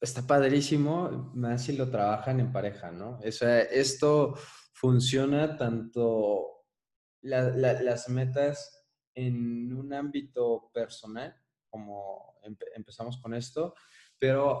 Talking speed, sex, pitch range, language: 105 wpm, male, 110-130 Hz, Spanish